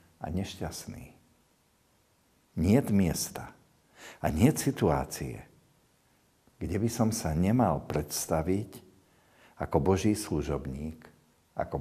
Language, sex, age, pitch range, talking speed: Slovak, male, 60-79, 75-100 Hz, 85 wpm